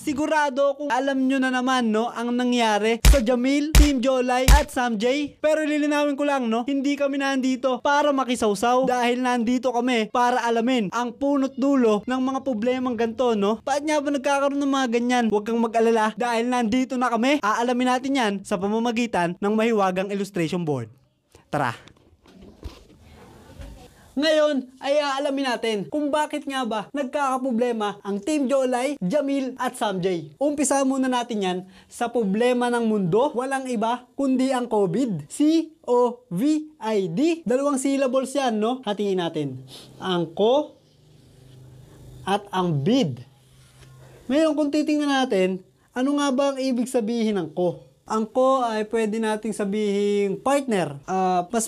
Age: 20-39